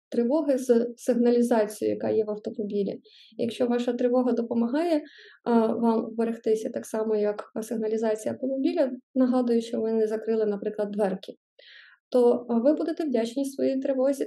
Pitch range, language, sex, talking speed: 225-260 Hz, Ukrainian, female, 135 wpm